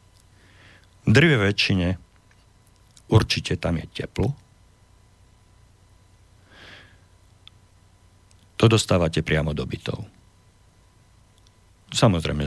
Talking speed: 65 wpm